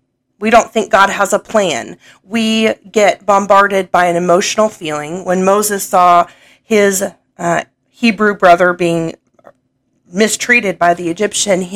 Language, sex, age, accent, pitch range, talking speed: English, female, 40-59, American, 175-210 Hz, 140 wpm